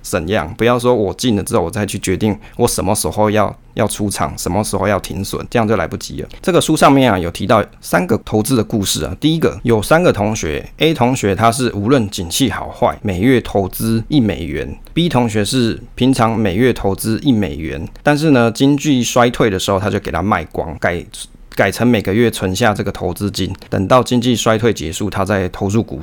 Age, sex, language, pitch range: 20-39, male, Chinese, 95-120 Hz